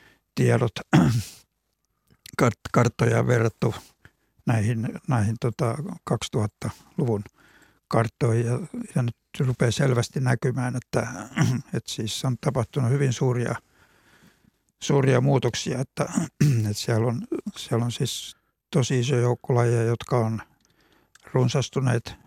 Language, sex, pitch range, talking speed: Finnish, male, 115-140 Hz, 100 wpm